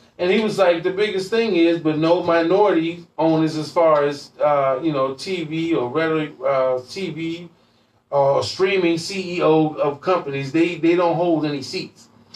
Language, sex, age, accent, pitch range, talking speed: English, male, 30-49, American, 145-180 Hz, 165 wpm